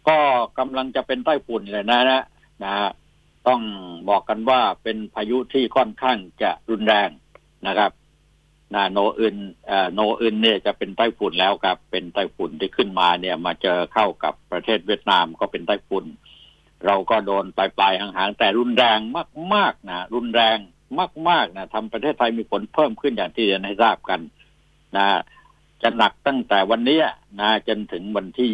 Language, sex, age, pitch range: Thai, male, 60-79, 105-125 Hz